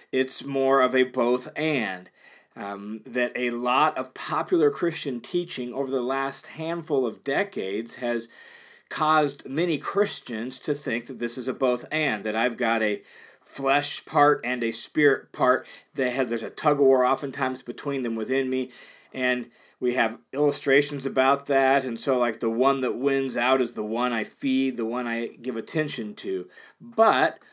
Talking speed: 160 wpm